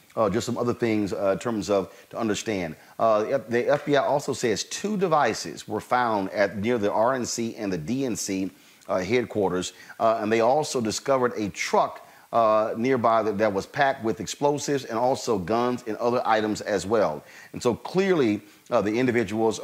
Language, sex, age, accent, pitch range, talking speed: English, male, 40-59, American, 105-125 Hz, 175 wpm